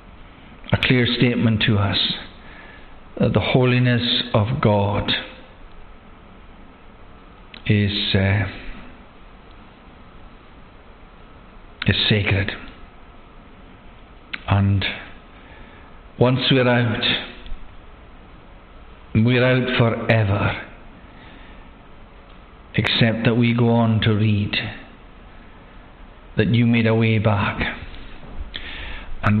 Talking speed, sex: 70 wpm, male